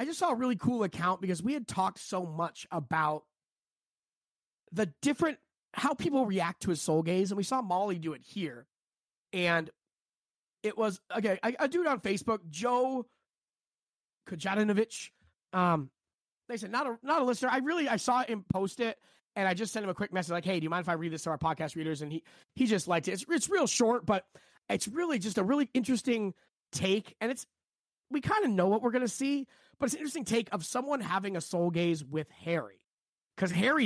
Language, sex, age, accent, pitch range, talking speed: English, male, 30-49, American, 170-230 Hz, 210 wpm